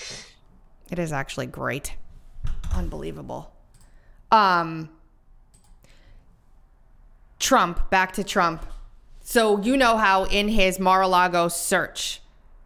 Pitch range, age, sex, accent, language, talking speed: 165-195 Hz, 20-39, female, American, English, 85 wpm